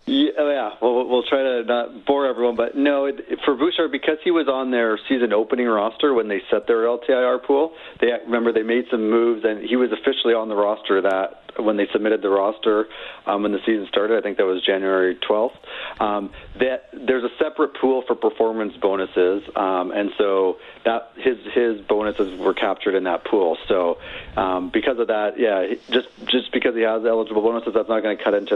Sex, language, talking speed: male, English, 210 wpm